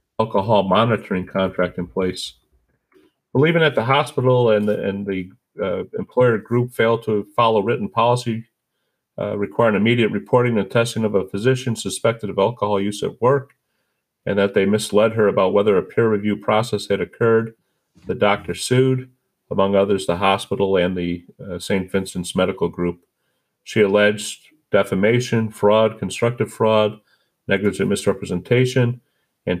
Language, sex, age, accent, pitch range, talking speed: English, male, 40-59, American, 100-120 Hz, 145 wpm